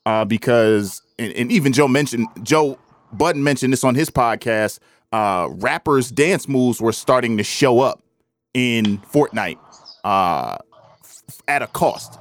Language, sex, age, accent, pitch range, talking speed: English, male, 20-39, American, 115-145 Hz, 145 wpm